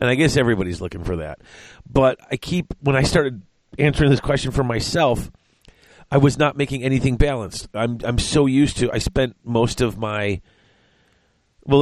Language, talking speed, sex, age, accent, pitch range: English, 180 wpm, male, 40-59, American, 105-135 Hz